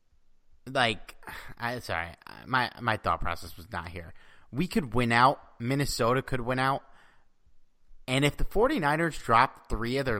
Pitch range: 100-135 Hz